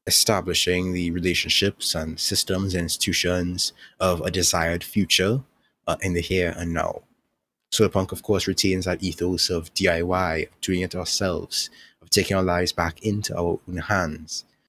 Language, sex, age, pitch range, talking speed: English, male, 20-39, 85-100 Hz, 155 wpm